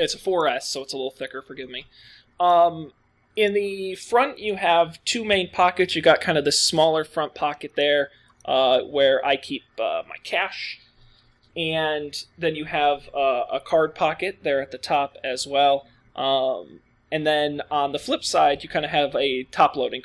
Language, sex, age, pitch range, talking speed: English, male, 20-39, 140-180 Hz, 185 wpm